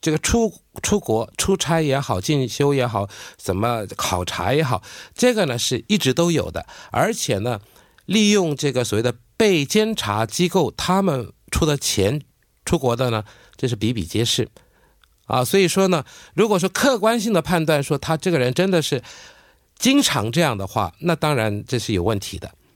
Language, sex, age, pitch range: Korean, male, 50-69, 115-180 Hz